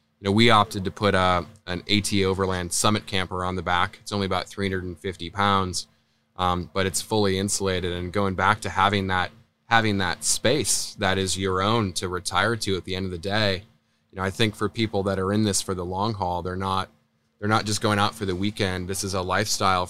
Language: English